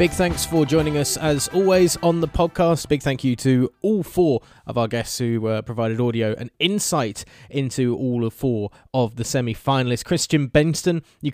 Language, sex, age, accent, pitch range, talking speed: English, male, 20-39, British, 120-155 Hz, 190 wpm